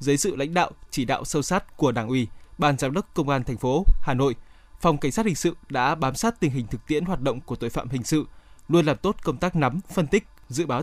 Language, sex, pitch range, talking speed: Vietnamese, male, 130-170 Hz, 270 wpm